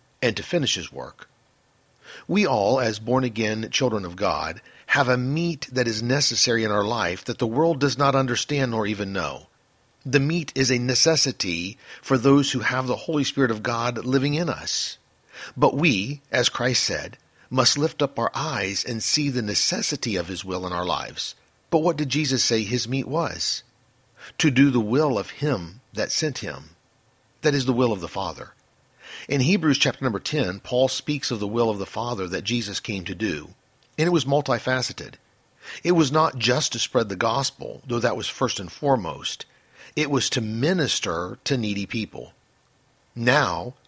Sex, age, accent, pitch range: male, 50-69, American, 115-145 Hz